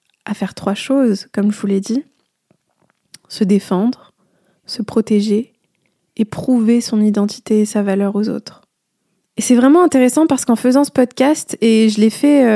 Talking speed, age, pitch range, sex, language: 165 wpm, 20-39, 205-245 Hz, female, French